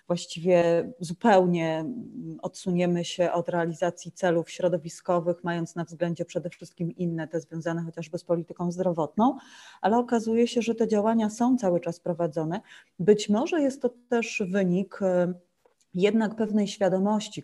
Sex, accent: female, native